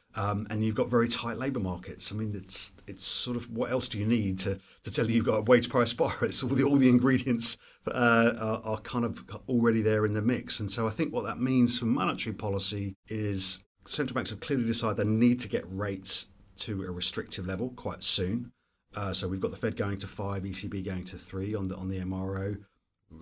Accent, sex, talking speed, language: British, male, 235 wpm, English